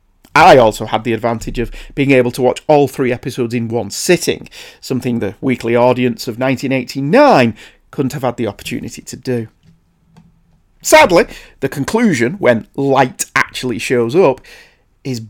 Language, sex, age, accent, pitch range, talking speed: English, male, 40-59, British, 120-155 Hz, 150 wpm